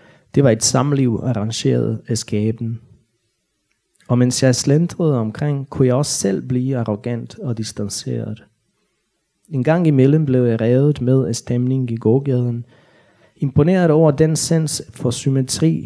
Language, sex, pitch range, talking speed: Danish, male, 120-145 Hz, 140 wpm